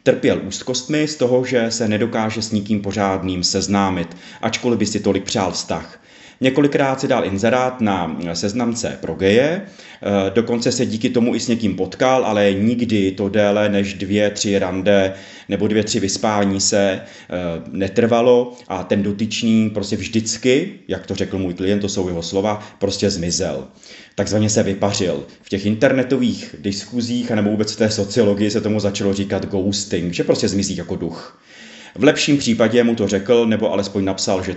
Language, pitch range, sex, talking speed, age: Czech, 100-120 Hz, male, 165 wpm, 30-49